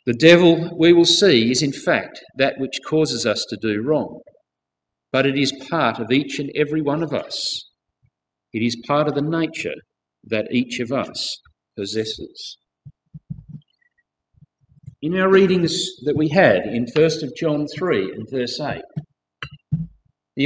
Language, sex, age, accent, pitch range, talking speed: English, male, 50-69, Australian, 135-185 Hz, 155 wpm